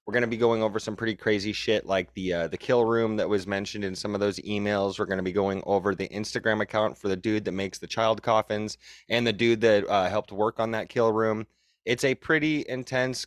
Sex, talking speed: male, 255 wpm